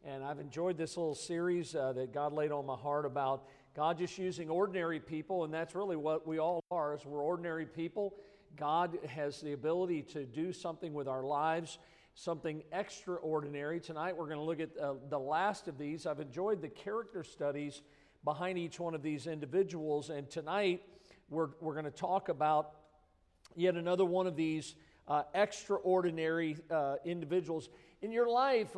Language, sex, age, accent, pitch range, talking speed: English, male, 50-69, American, 155-190 Hz, 175 wpm